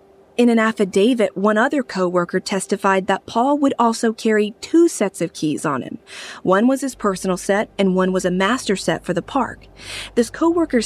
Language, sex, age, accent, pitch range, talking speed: English, female, 30-49, American, 180-235 Hz, 190 wpm